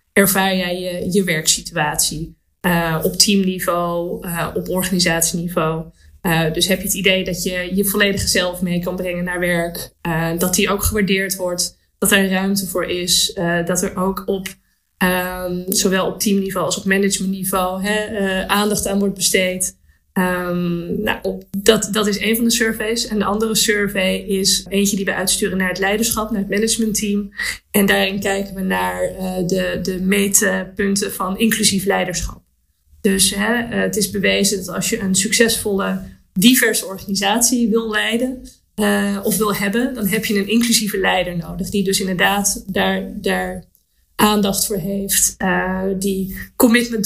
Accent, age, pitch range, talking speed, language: Dutch, 20-39, 180-205 Hz, 160 wpm, Dutch